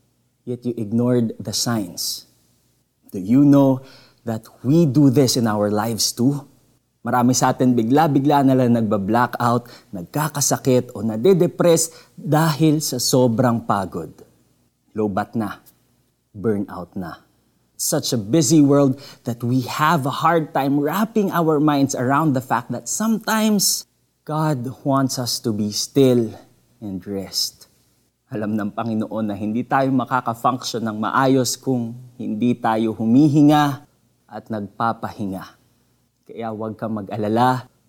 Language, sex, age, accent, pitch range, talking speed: Filipino, male, 20-39, native, 105-135 Hz, 125 wpm